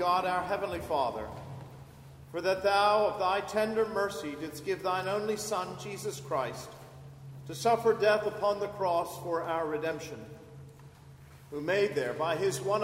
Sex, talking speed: male, 155 wpm